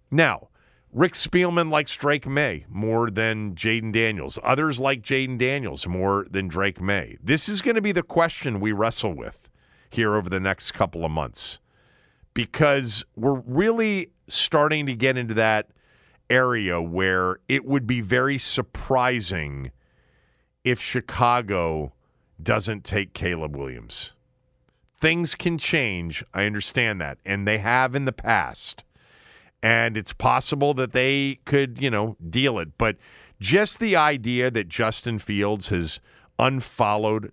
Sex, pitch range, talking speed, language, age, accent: male, 95-130 Hz, 140 wpm, English, 40-59, American